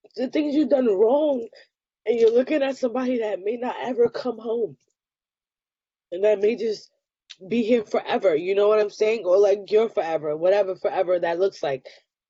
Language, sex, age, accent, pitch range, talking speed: English, female, 10-29, American, 170-260 Hz, 180 wpm